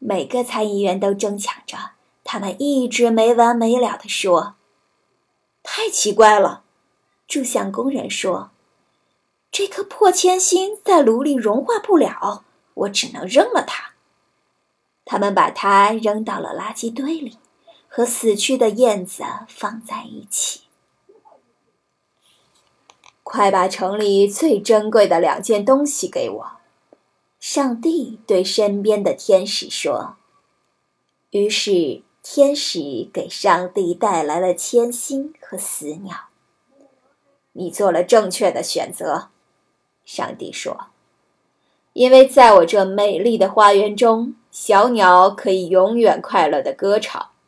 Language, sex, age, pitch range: Chinese, female, 20-39, 200-270 Hz